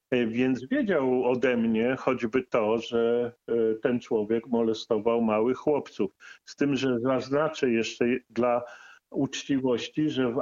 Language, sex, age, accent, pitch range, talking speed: Polish, male, 40-59, native, 120-165 Hz, 120 wpm